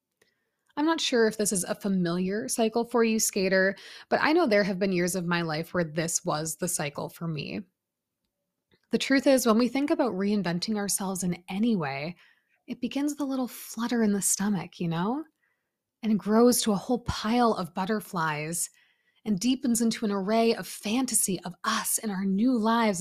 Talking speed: 195 wpm